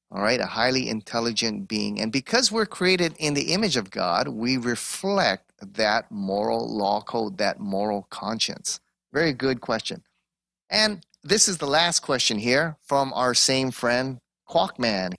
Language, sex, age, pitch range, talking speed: English, male, 30-49, 120-165 Hz, 155 wpm